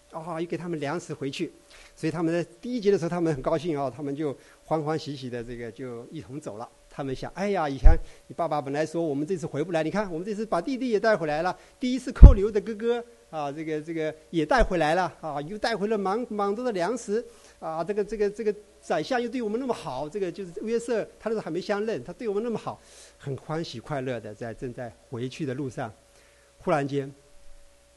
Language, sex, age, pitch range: English, male, 50-69, 135-205 Hz